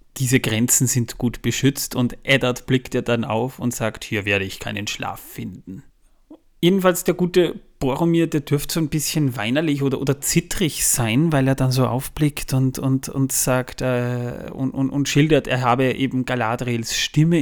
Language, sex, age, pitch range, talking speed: German, male, 30-49, 120-145 Hz, 180 wpm